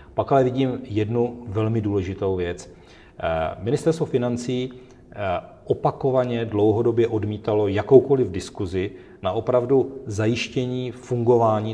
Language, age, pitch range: Czech, 40-59, 100-125 Hz